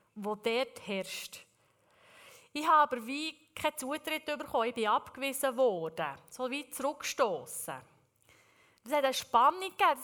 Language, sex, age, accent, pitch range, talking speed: German, female, 30-49, Swiss, 210-285 Hz, 130 wpm